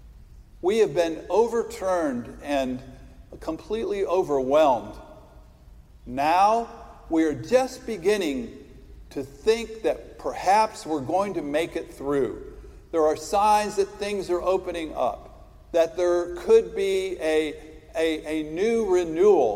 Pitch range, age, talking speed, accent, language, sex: 140-200 Hz, 50-69, 115 wpm, American, English, male